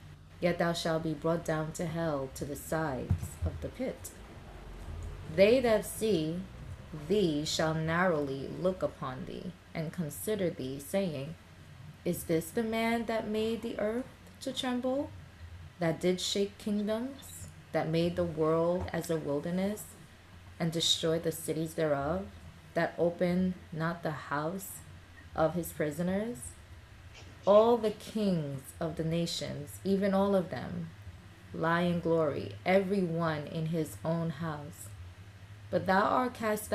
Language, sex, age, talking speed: English, female, 20-39, 135 wpm